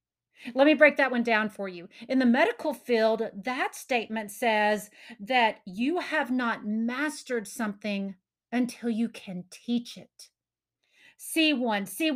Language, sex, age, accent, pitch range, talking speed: English, female, 40-59, American, 215-280 Hz, 145 wpm